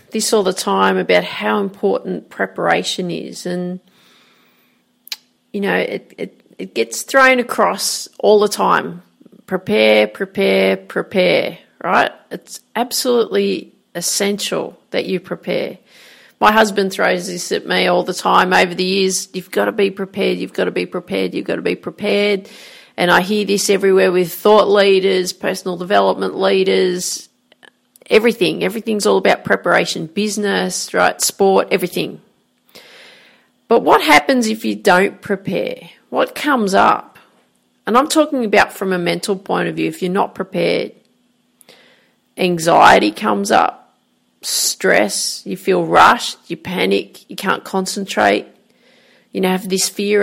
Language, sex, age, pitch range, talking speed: English, female, 40-59, 180-225 Hz, 140 wpm